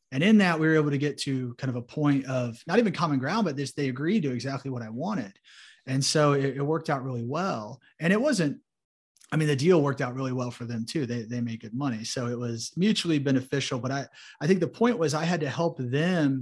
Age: 30-49